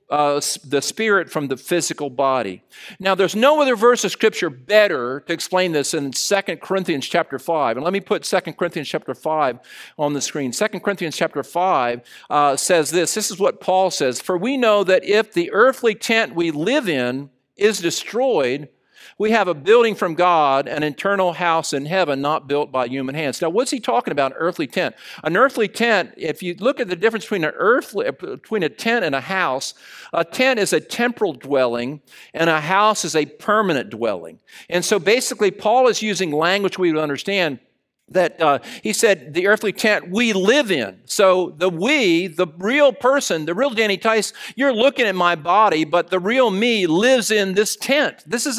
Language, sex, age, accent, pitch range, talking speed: English, male, 50-69, American, 165-230 Hz, 195 wpm